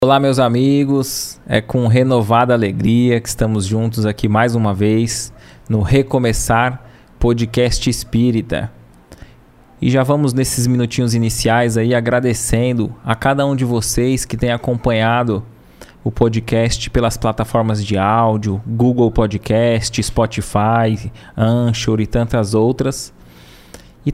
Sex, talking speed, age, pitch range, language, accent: male, 120 wpm, 20-39, 115-130 Hz, Portuguese, Brazilian